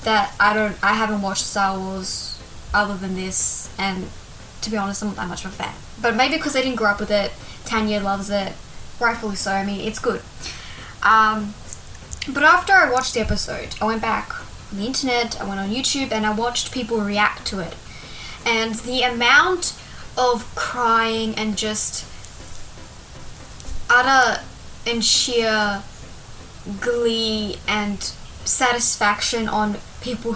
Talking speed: 155 wpm